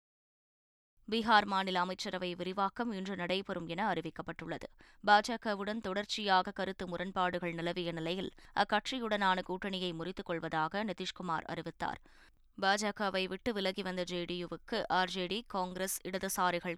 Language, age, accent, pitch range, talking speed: Tamil, 20-39, native, 175-205 Hz, 100 wpm